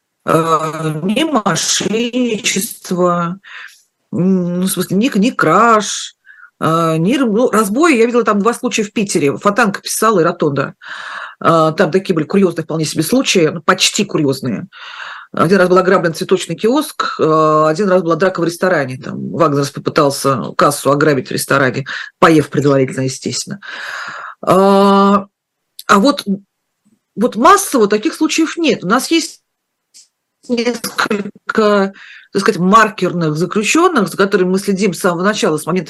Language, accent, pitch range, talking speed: Russian, native, 175-230 Hz, 130 wpm